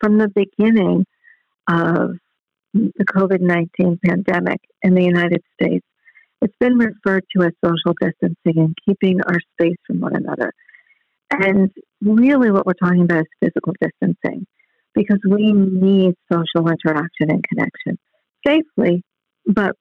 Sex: female